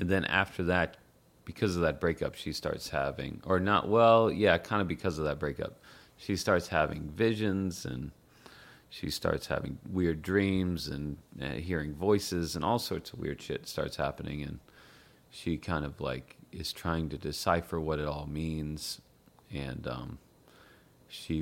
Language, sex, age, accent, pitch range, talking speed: English, male, 30-49, American, 75-90 Hz, 165 wpm